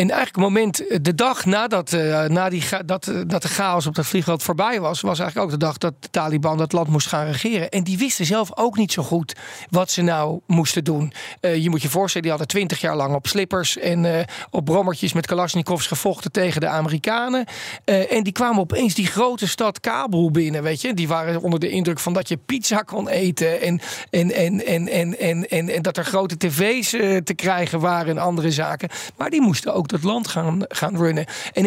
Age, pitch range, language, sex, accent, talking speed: 40-59, 165-195 Hz, Dutch, male, Dutch, 225 wpm